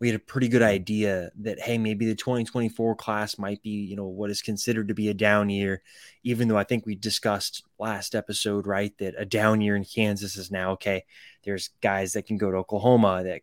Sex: male